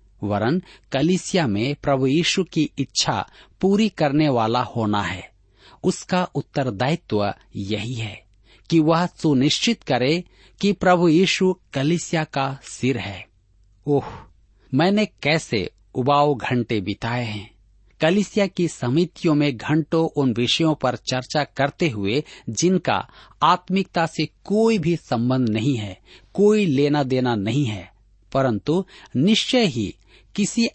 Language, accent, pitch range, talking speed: Hindi, native, 110-170 Hz, 120 wpm